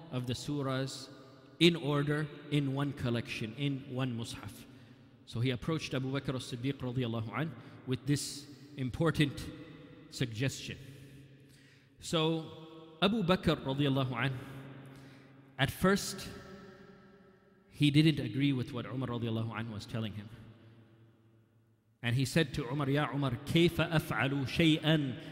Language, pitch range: English, 130-155 Hz